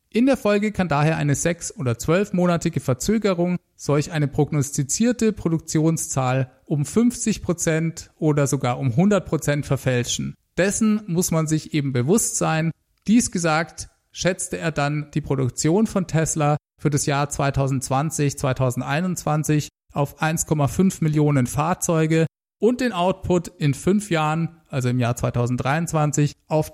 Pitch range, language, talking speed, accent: 140-180 Hz, German, 130 wpm, German